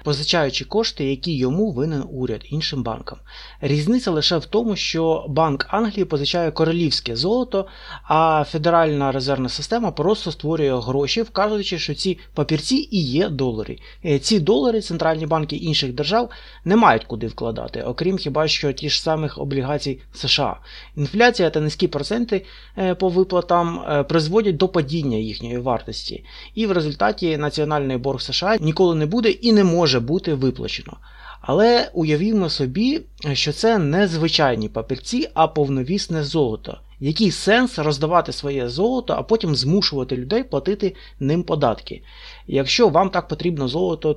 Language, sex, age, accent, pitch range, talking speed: Russian, male, 20-39, native, 145-195 Hz, 140 wpm